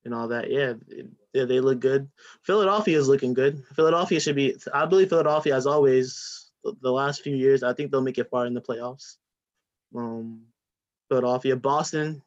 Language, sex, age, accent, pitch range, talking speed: English, male, 20-39, American, 125-145 Hz, 170 wpm